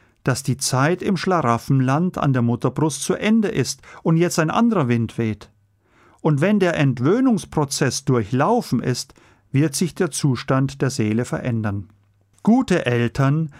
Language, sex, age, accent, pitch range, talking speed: German, male, 40-59, German, 120-170 Hz, 140 wpm